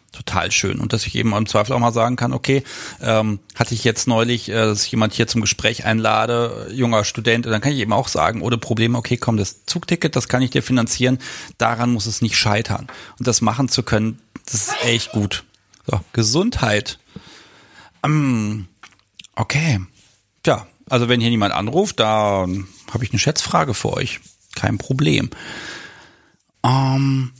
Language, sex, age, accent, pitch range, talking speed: German, male, 40-59, German, 105-130 Hz, 175 wpm